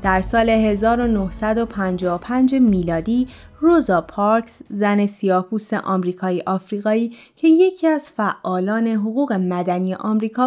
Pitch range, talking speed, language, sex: 200-275 Hz, 95 wpm, Persian, female